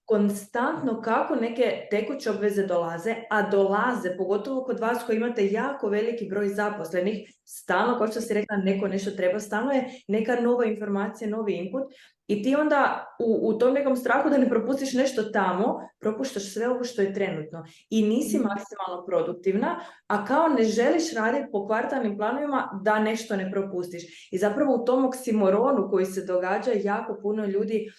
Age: 20-39